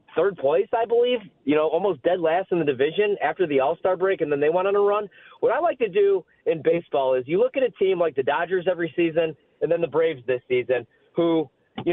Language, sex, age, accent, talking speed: English, male, 30-49, American, 245 wpm